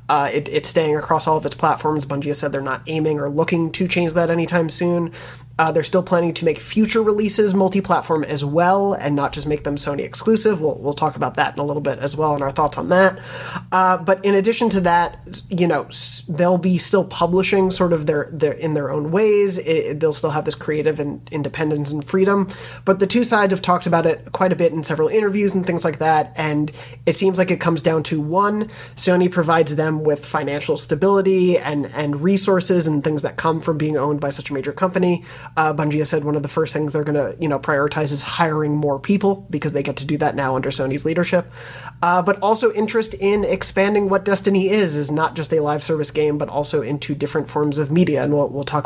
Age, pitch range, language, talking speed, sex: 30-49, 150-180 Hz, English, 230 wpm, male